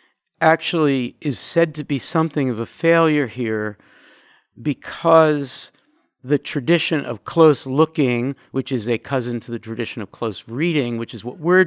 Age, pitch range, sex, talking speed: 50-69, 135-185 Hz, male, 155 wpm